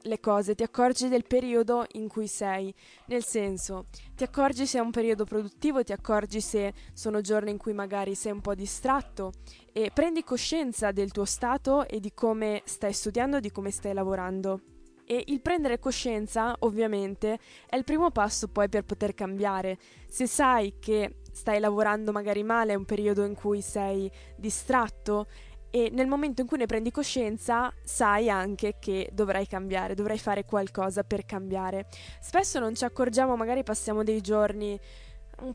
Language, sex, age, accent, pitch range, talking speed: Italian, female, 20-39, native, 200-245 Hz, 165 wpm